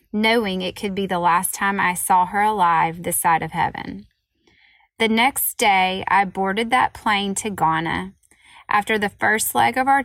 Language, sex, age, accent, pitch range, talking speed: English, female, 20-39, American, 180-210 Hz, 180 wpm